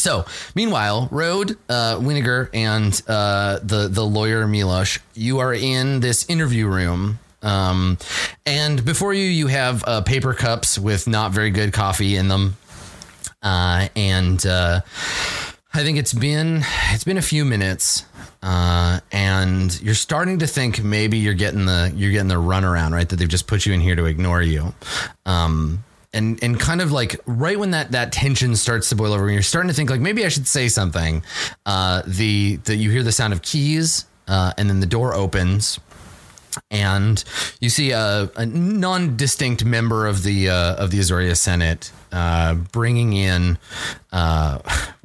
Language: English